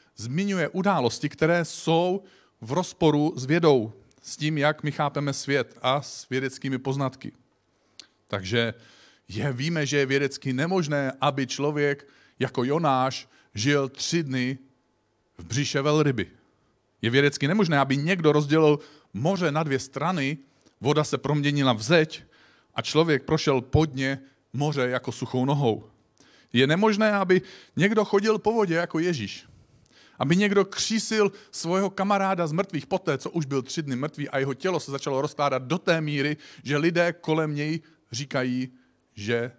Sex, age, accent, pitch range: male, 40-59, native, 125-155 Hz